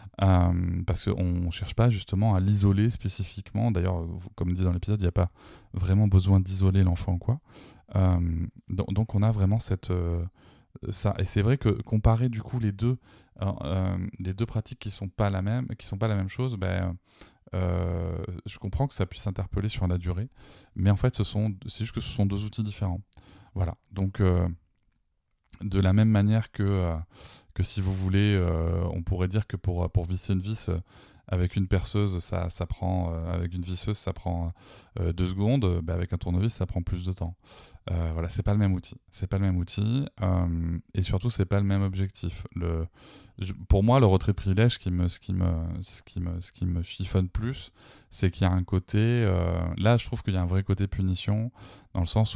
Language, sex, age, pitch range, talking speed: French, male, 20-39, 90-105 Hz, 210 wpm